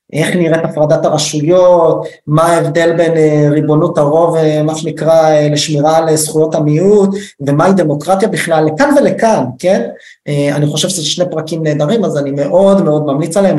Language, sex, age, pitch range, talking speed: Hebrew, male, 20-39, 150-180 Hz, 150 wpm